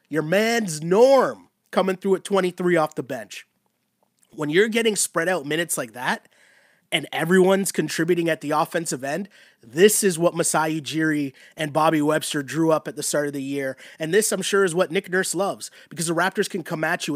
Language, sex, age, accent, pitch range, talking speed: English, male, 30-49, American, 150-185 Hz, 200 wpm